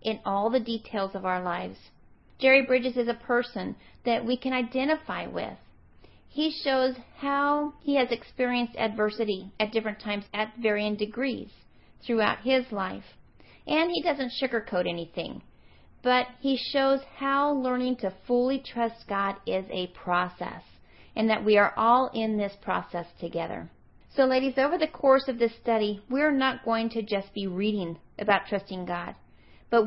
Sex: female